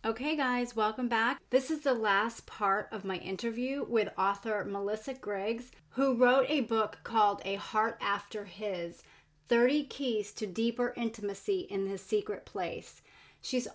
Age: 30-49